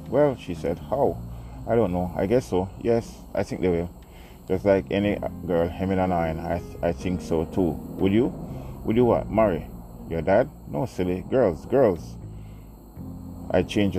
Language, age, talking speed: English, 30-49, 170 wpm